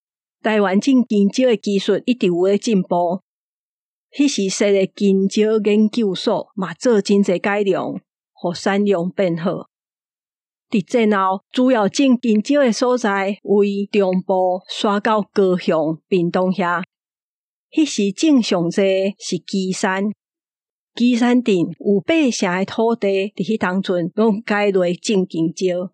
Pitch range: 190-230 Hz